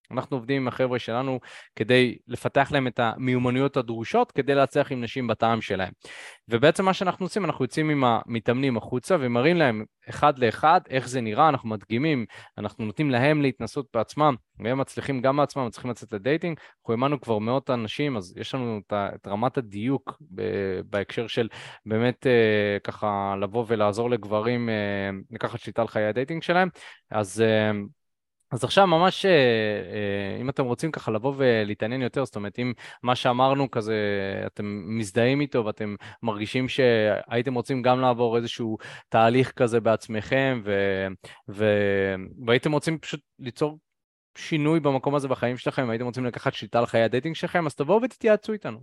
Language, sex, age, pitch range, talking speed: Hebrew, male, 20-39, 110-145 Hz, 145 wpm